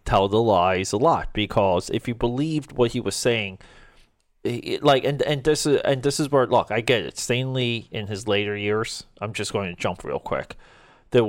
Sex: male